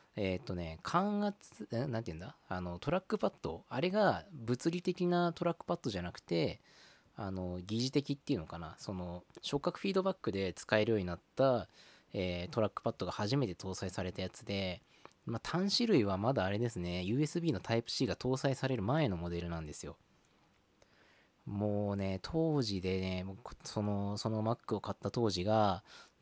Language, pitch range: Japanese, 95-145 Hz